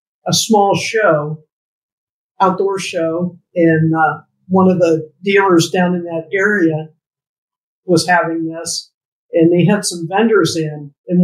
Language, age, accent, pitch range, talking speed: English, 50-69, American, 165-205 Hz, 135 wpm